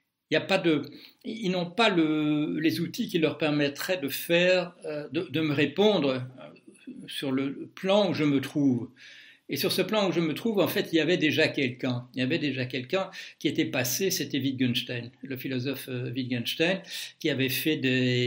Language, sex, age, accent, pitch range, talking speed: French, male, 60-79, French, 125-155 Hz, 190 wpm